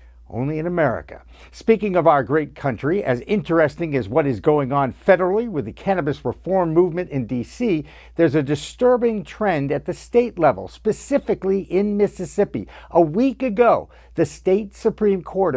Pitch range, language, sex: 150-205 Hz, English, male